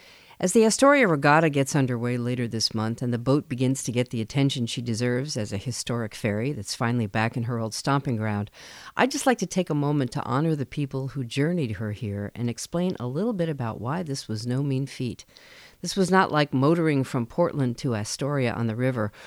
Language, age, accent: English, 50-69, American